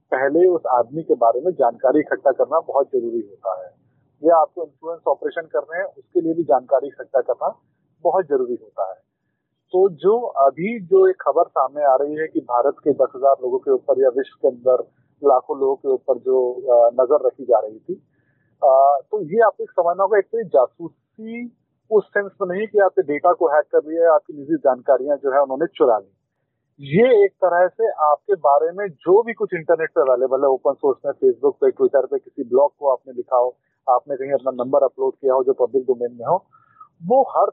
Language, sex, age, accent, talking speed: Hindi, male, 40-59, native, 215 wpm